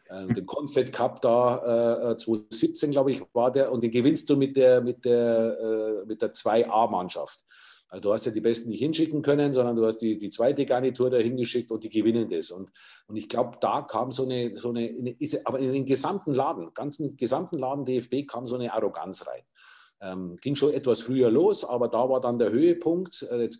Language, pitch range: German, 110-135 Hz